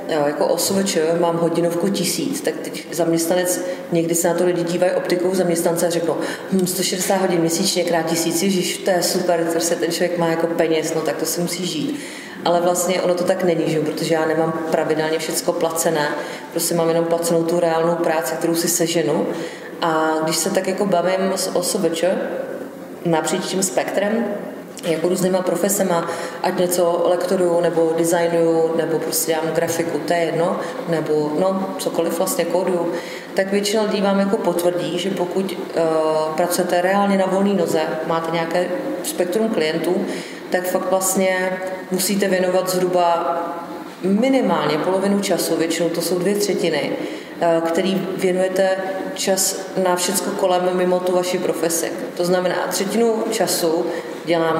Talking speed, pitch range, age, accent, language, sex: 160 wpm, 165-185 Hz, 30-49, Czech, English, female